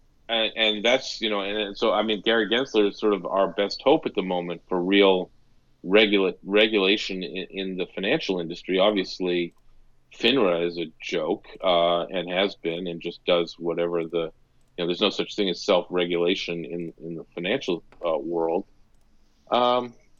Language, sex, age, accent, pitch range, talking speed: English, male, 40-59, American, 90-120 Hz, 170 wpm